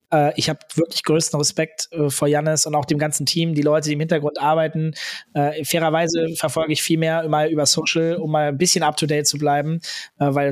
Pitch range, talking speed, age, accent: 145-165 Hz, 210 wpm, 20-39, German